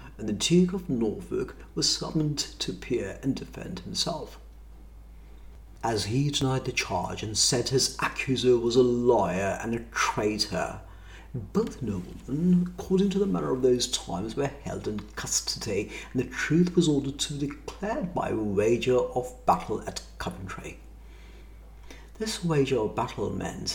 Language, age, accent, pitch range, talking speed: English, 50-69, British, 110-160 Hz, 150 wpm